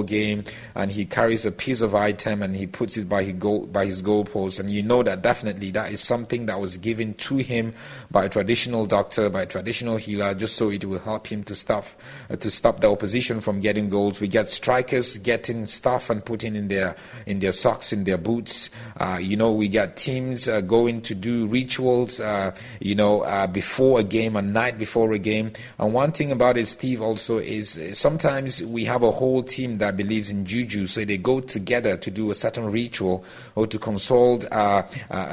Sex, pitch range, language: male, 100-120 Hz, English